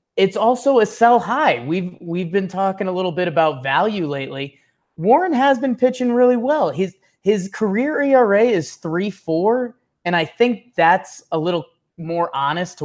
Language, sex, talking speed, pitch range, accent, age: English, male, 175 wpm, 150-220 Hz, American, 20-39